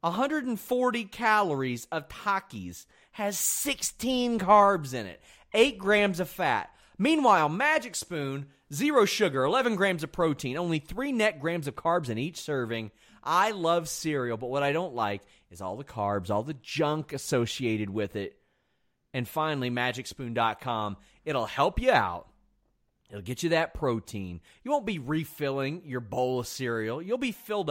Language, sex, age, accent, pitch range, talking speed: English, male, 30-49, American, 125-175 Hz, 155 wpm